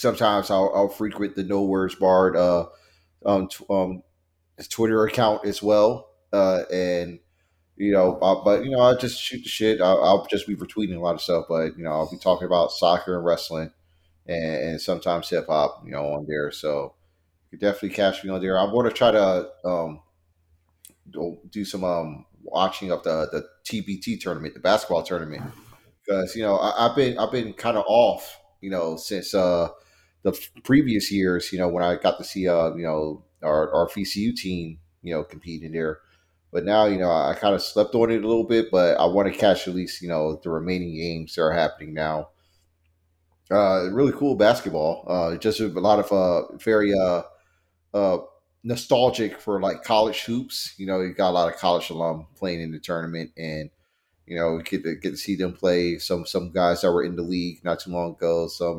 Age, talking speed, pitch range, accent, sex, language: 30-49, 210 wpm, 85-100 Hz, American, male, English